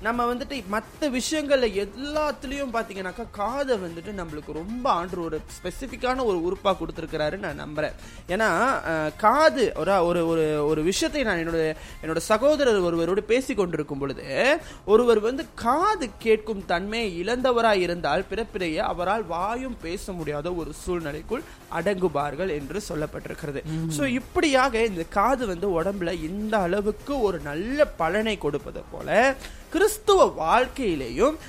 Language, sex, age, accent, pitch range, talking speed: Tamil, male, 20-39, native, 155-235 Hz, 120 wpm